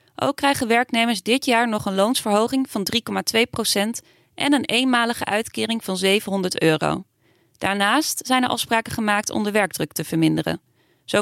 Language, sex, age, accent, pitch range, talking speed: Dutch, female, 30-49, Dutch, 195-245 Hz, 150 wpm